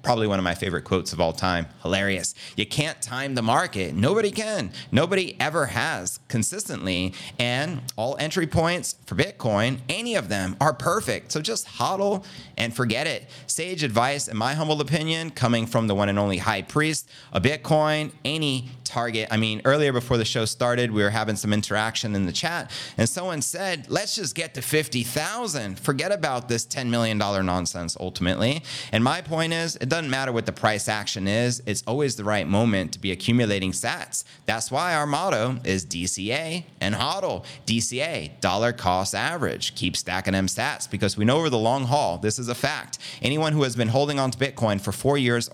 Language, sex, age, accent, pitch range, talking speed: English, male, 30-49, American, 105-145 Hz, 190 wpm